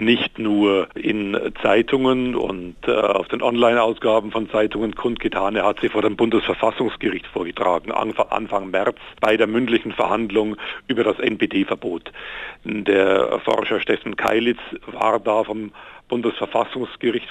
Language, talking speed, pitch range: German, 130 wpm, 105-120 Hz